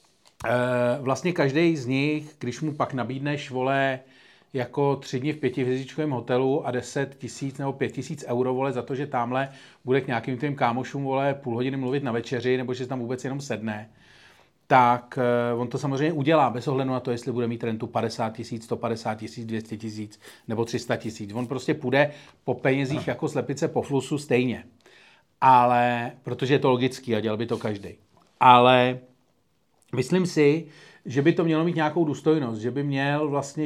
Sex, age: male, 40-59